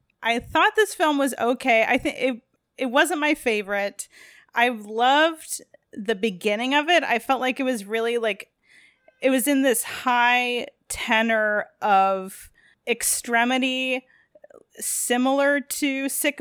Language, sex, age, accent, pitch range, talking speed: English, female, 20-39, American, 215-265 Hz, 135 wpm